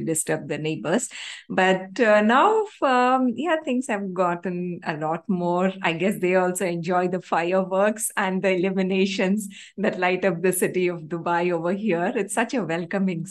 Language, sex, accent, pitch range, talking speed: English, female, Indian, 175-225 Hz, 170 wpm